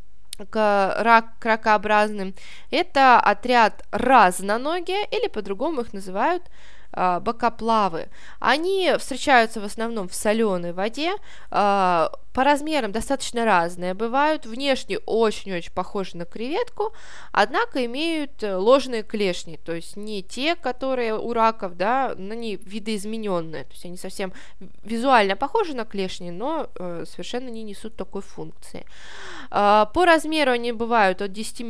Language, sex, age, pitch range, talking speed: Russian, female, 20-39, 185-250 Hz, 120 wpm